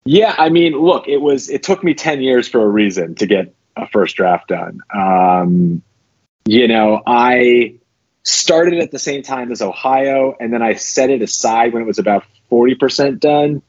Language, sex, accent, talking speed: English, male, American, 195 wpm